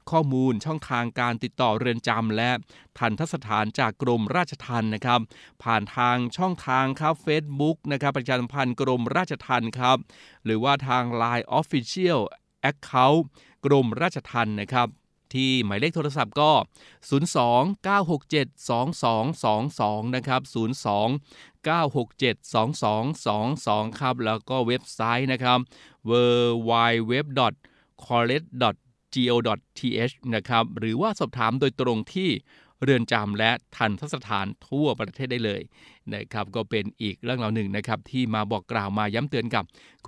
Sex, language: male, Thai